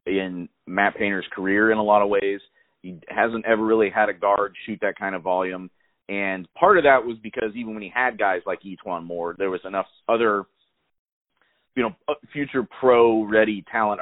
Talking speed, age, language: 190 wpm, 40-59, English